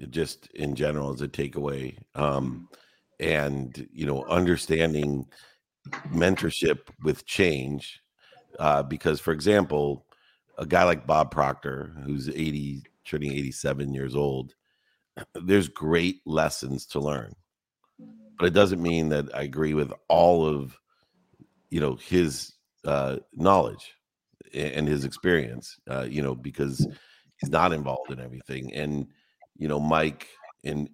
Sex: male